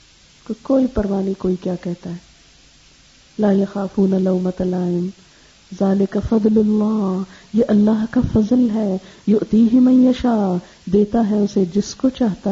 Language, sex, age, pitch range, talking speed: Urdu, female, 50-69, 190-230 Hz, 115 wpm